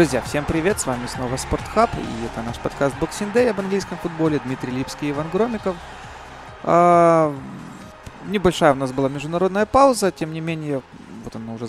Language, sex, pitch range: Russian, male, 125-170 Hz